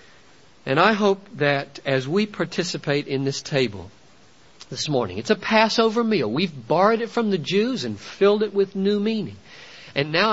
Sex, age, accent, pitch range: male, 50-69, American, 140-200 Hz